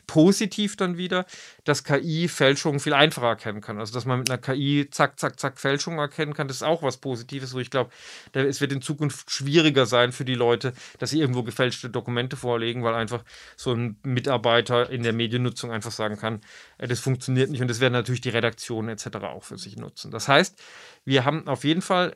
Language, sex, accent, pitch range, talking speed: German, male, German, 125-150 Hz, 205 wpm